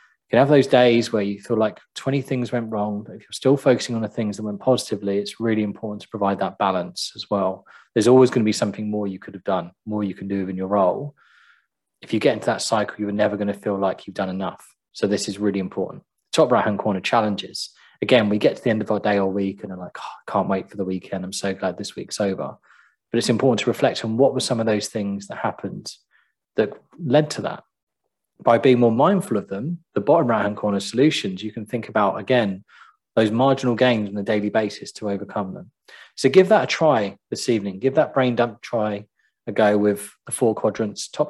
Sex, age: male, 20-39